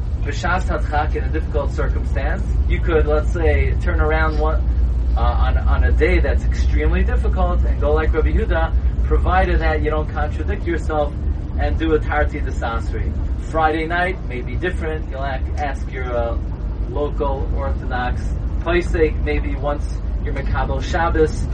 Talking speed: 160 wpm